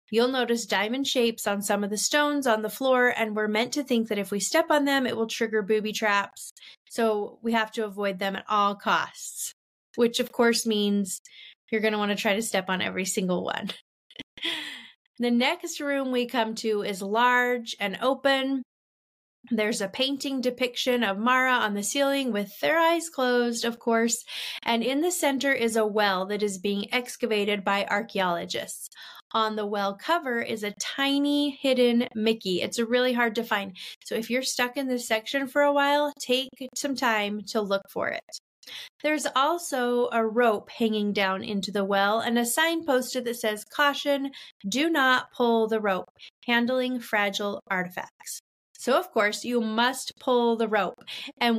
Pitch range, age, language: 210-260 Hz, 20-39, English